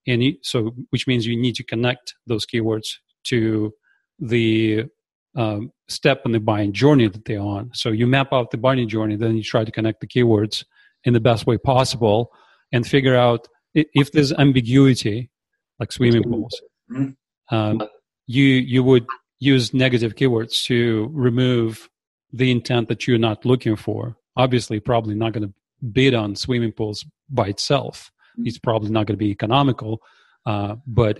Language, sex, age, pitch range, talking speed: English, male, 40-59, 110-130 Hz, 165 wpm